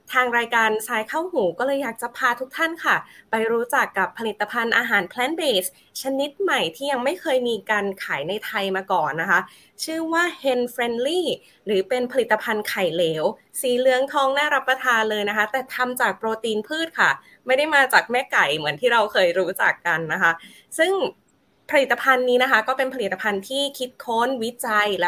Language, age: Thai, 20-39